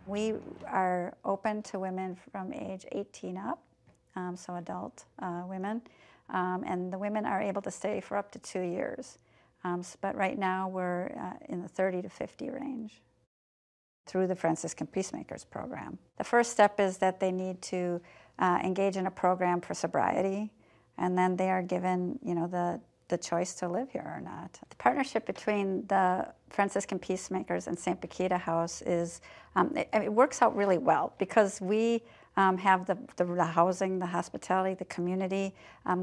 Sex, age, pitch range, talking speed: female, 50-69, 180-195 Hz, 175 wpm